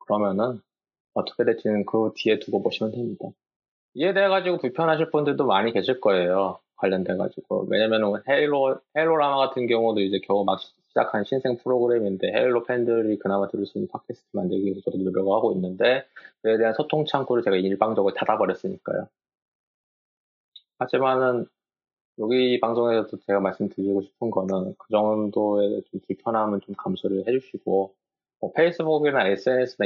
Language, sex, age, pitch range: Korean, male, 20-39, 100-150 Hz